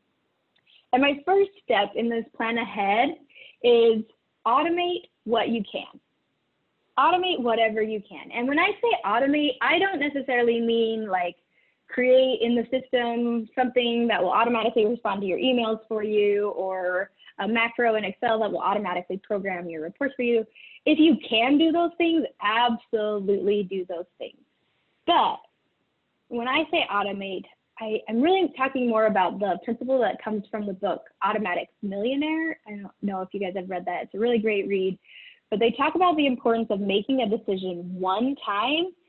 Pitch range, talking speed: 200-260 Hz, 170 wpm